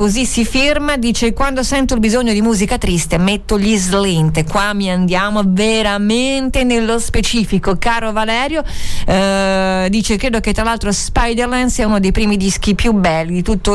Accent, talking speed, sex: native, 165 wpm, female